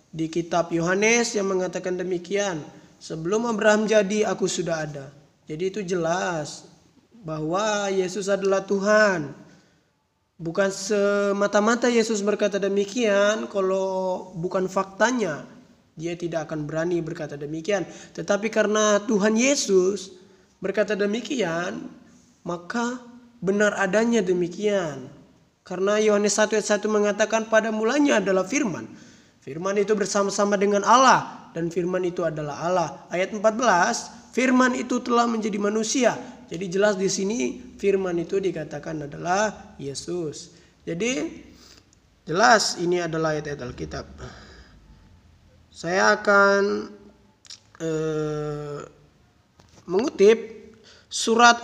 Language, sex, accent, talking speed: Indonesian, male, native, 100 wpm